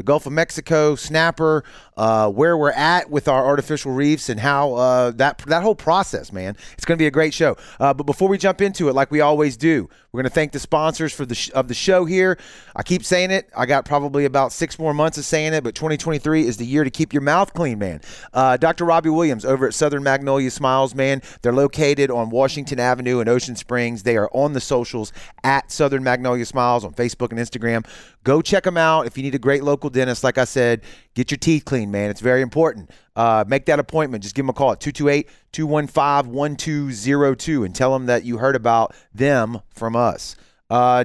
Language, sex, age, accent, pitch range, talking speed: English, male, 30-49, American, 125-150 Hz, 225 wpm